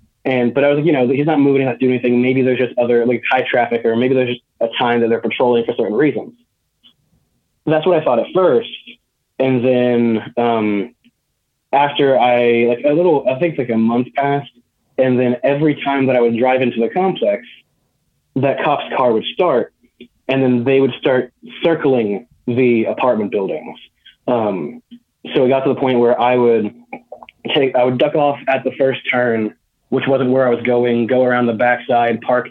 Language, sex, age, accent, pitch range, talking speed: English, male, 20-39, American, 120-130 Hz, 200 wpm